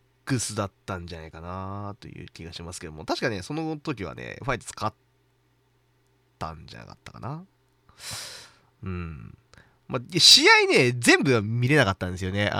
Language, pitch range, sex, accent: Japanese, 95-140 Hz, male, native